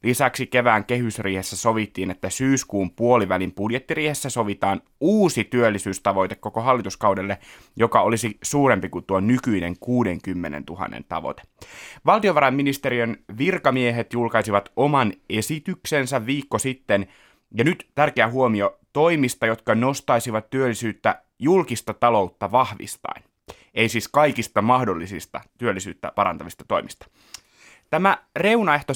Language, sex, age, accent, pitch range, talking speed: Finnish, male, 30-49, native, 105-140 Hz, 100 wpm